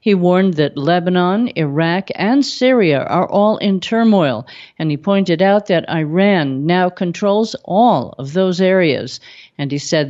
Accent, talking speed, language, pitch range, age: American, 155 wpm, English, 165-225 Hz, 50-69